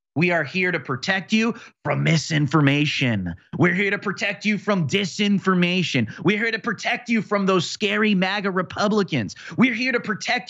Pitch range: 140-205 Hz